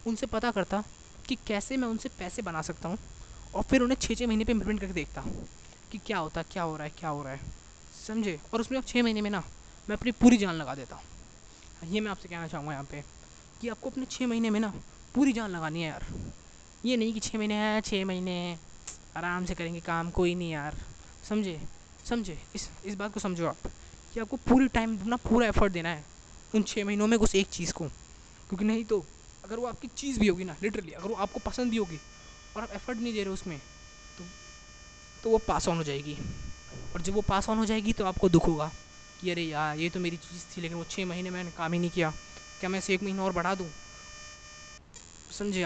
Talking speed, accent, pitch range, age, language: 230 wpm, native, 165-215 Hz, 20-39, Hindi